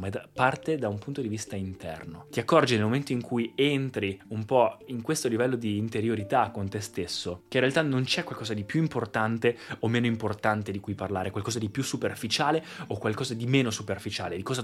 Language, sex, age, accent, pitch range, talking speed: Italian, male, 20-39, native, 110-140 Hz, 210 wpm